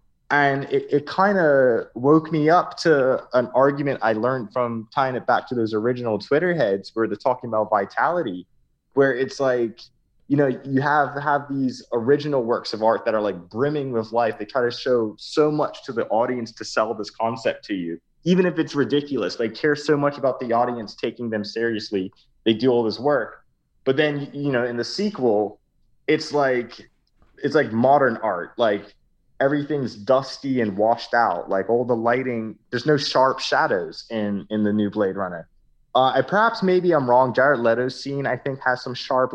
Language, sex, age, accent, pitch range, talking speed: English, male, 20-39, American, 115-140 Hz, 190 wpm